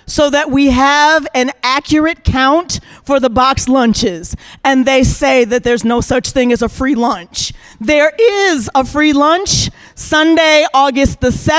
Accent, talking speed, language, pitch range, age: American, 160 wpm, English, 250-300 Hz, 40-59